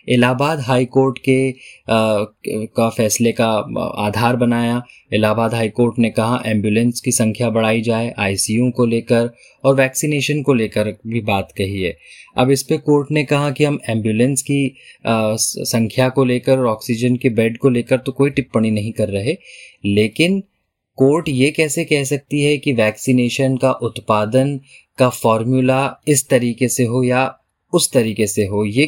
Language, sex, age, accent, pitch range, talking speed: Hindi, male, 20-39, native, 110-130 Hz, 165 wpm